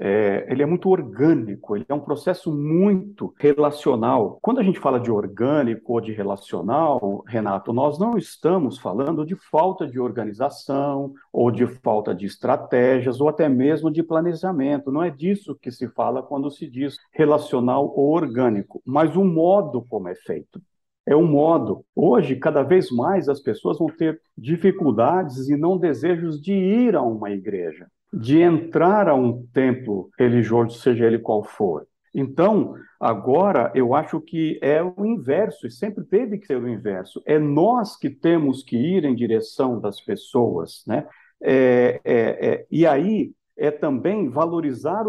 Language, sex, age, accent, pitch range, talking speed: Portuguese, male, 50-69, Brazilian, 130-185 Hz, 160 wpm